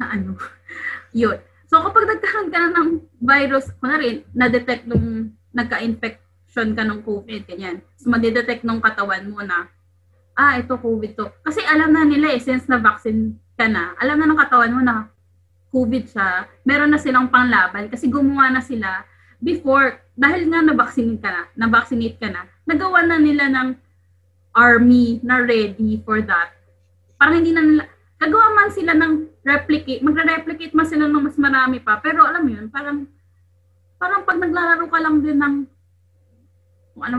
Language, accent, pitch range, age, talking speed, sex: Filipino, native, 200-285 Hz, 20-39, 160 wpm, female